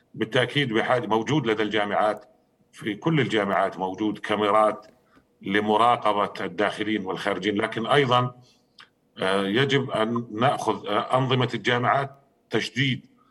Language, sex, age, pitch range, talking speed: Arabic, male, 50-69, 105-125 Hz, 95 wpm